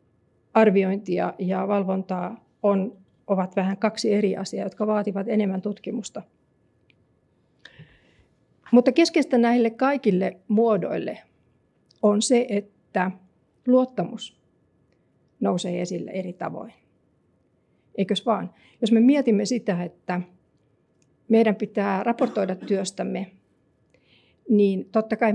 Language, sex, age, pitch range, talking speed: Finnish, female, 50-69, 195-235 Hz, 90 wpm